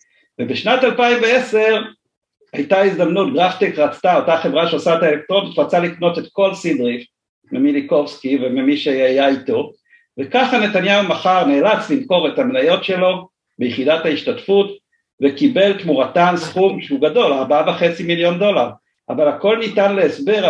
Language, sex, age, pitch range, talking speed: Hebrew, male, 50-69, 160-225 Hz, 125 wpm